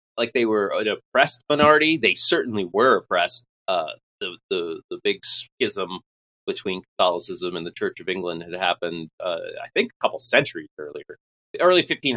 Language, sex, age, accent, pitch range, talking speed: English, male, 30-49, American, 110-135 Hz, 175 wpm